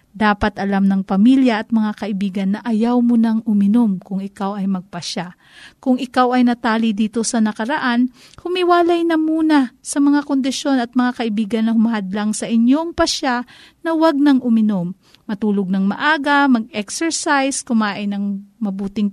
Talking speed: 150 wpm